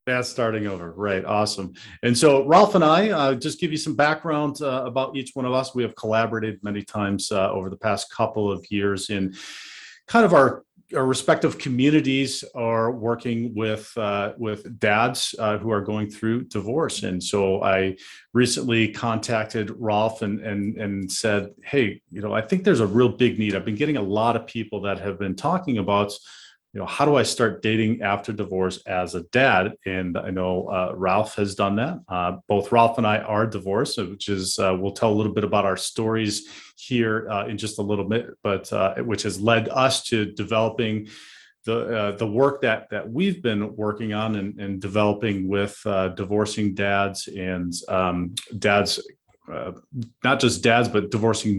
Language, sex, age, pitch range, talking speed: English, male, 40-59, 100-120 Hz, 190 wpm